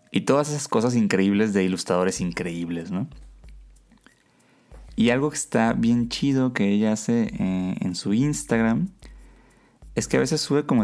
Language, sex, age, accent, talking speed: Spanish, male, 30-49, Mexican, 155 wpm